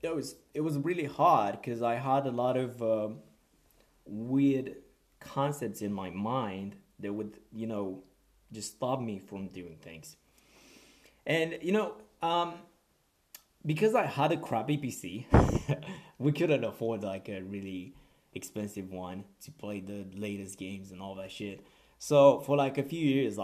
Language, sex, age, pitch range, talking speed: English, male, 20-39, 95-115 Hz, 155 wpm